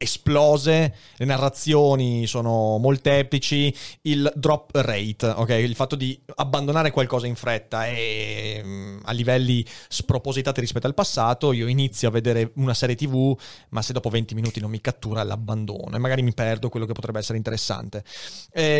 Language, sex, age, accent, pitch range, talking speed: Italian, male, 30-49, native, 110-140 Hz, 155 wpm